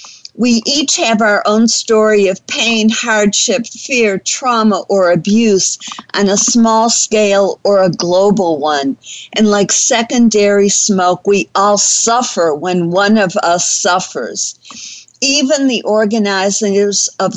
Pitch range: 190-230 Hz